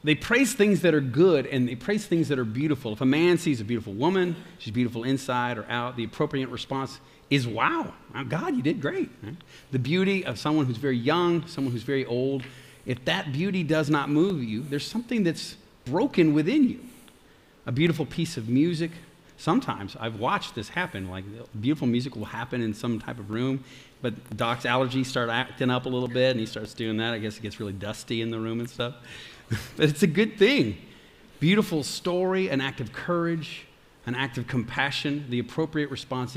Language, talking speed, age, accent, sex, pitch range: English, 200 wpm, 40-59, American, male, 120-165 Hz